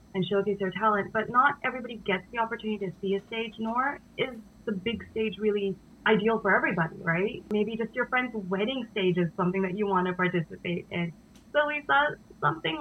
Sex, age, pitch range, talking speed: female, 20-39, 180-215 Hz, 195 wpm